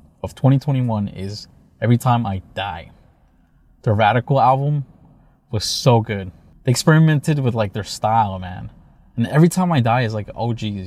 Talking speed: 160 wpm